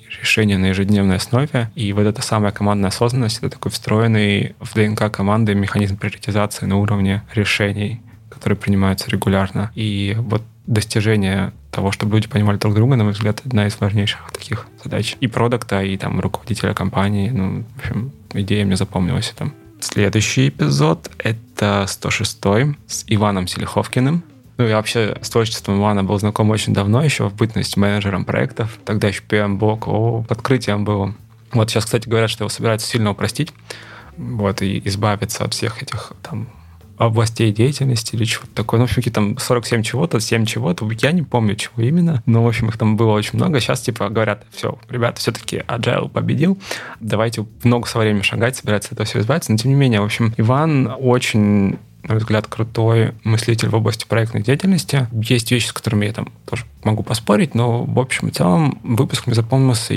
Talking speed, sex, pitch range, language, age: 175 wpm, male, 105-120 Hz, Russian, 20-39